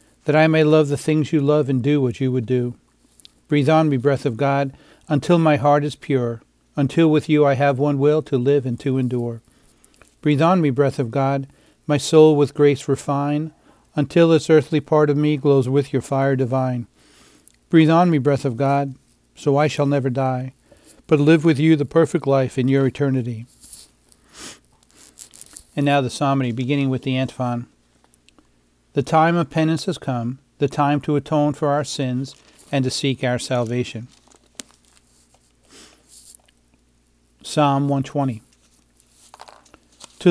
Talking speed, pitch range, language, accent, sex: 160 wpm, 125-150 Hz, English, American, male